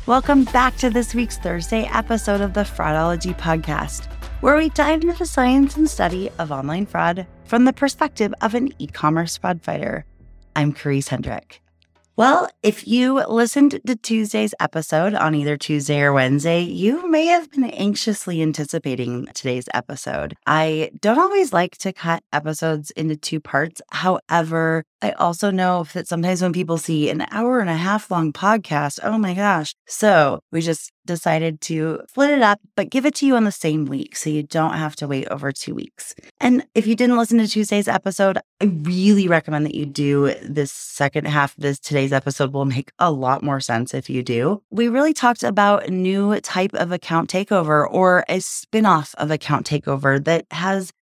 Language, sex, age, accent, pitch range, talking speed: English, female, 20-39, American, 150-210 Hz, 185 wpm